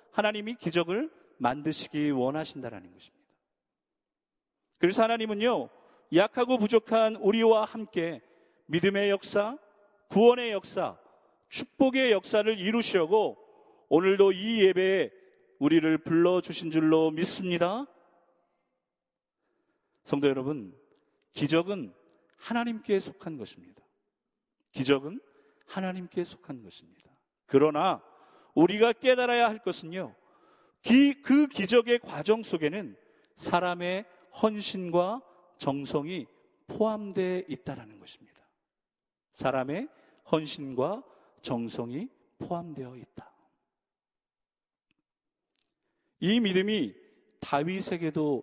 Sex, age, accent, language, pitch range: male, 40-59, native, Korean, 165-240 Hz